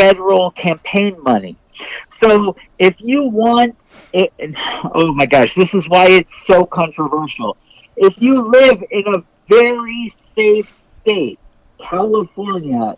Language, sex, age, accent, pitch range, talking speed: English, male, 50-69, American, 180-240 Hz, 125 wpm